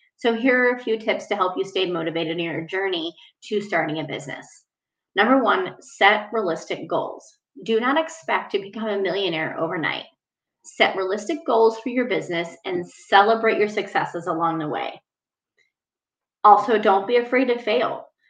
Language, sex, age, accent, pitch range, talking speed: English, female, 30-49, American, 190-240 Hz, 165 wpm